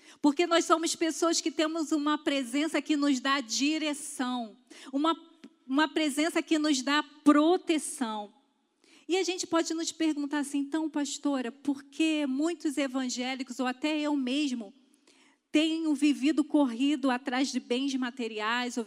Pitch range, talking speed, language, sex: 250-305 Hz, 140 wpm, Portuguese, female